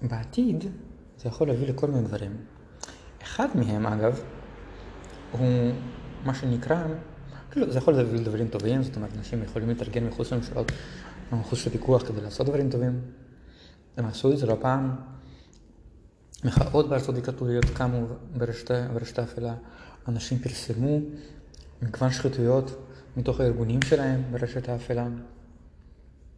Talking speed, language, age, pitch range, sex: 105 wpm, Hebrew, 20-39, 115-130 Hz, male